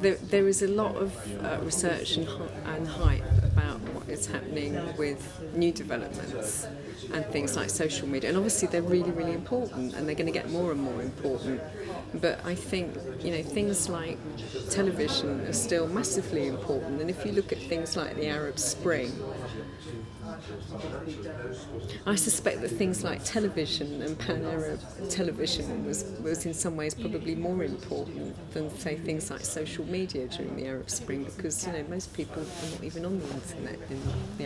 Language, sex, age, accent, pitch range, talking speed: English, female, 30-49, British, 120-180 Hz, 170 wpm